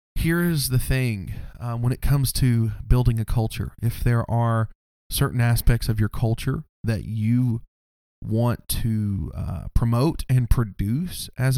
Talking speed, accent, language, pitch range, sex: 145 wpm, American, English, 105-135 Hz, male